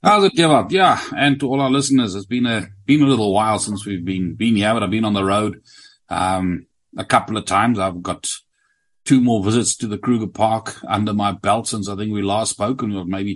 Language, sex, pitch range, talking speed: English, male, 105-130 Hz, 240 wpm